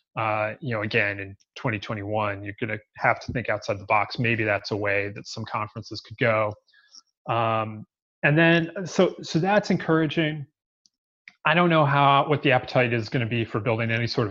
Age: 30-49